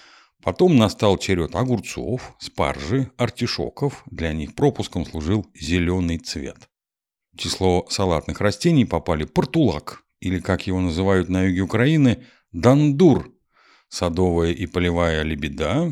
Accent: native